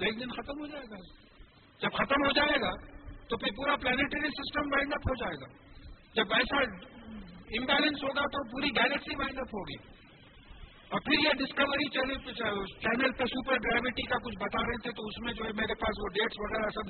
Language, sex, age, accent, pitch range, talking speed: English, male, 50-69, Indian, 215-270 Hz, 180 wpm